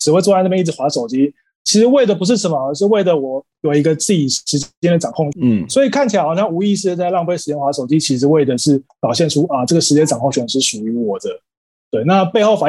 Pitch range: 135-195 Hz